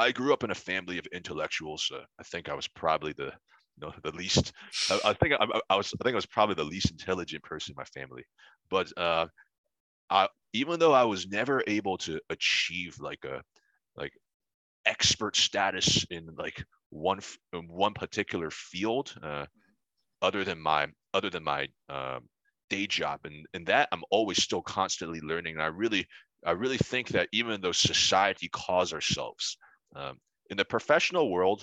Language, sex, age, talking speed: English, male, 30-49, 180 wpm